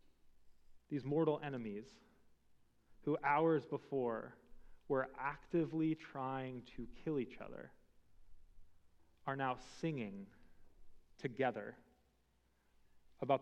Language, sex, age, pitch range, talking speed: English, male, 30-49, 115-190 Hz, 80 wpm